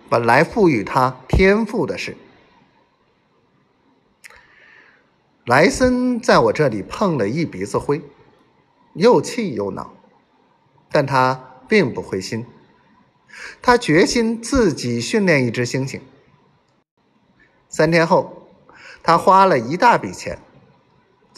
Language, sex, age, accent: Chinese, male, 50-69, native